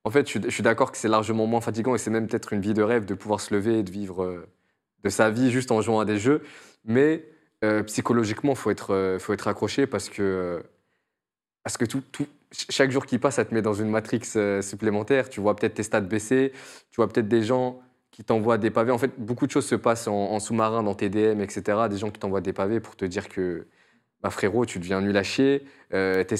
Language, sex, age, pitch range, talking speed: French, male, 20-39, 105-120 Hz, 245 wpm